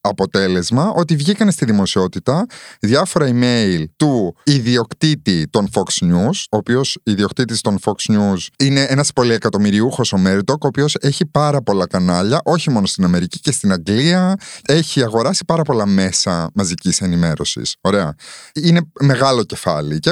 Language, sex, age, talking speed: Greek, male, 30-49, 145 wpm